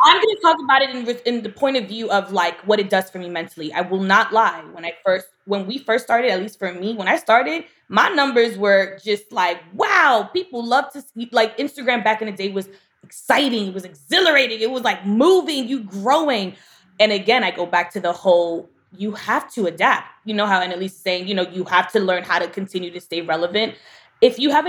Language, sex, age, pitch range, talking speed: English, female, 20-39, 190-240 Hz, 240 wpm